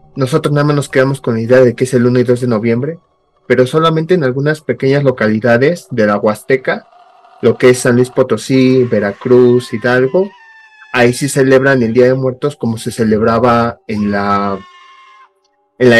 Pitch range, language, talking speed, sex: 120-150 Hz, Spanish, 175 wpm, male